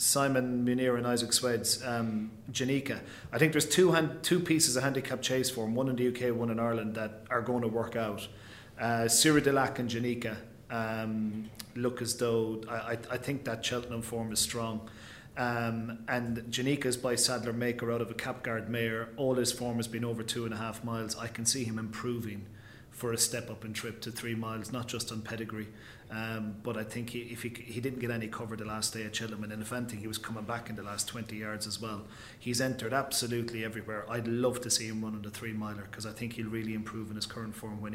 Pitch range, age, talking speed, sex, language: 110-120 Hz, 30-49, 230 wpm, male, English